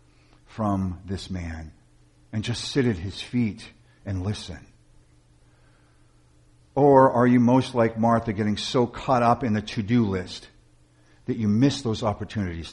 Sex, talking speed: male, 140 wpm